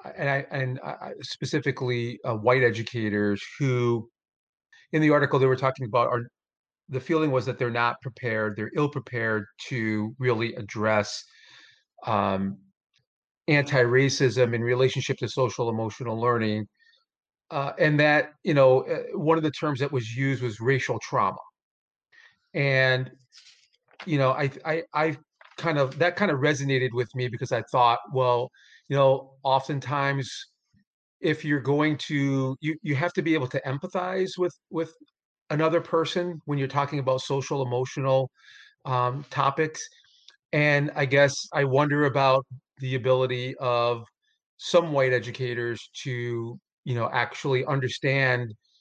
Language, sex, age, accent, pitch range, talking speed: English, male, 40-59, American, 125-150 Hz, 140 wpm